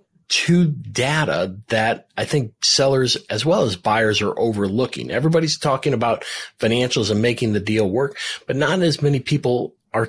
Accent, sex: American, male